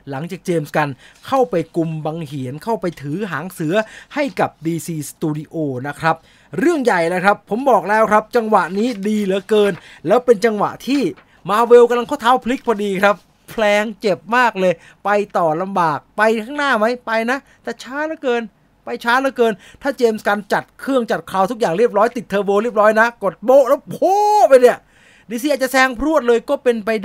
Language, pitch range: English, 170-230 Hz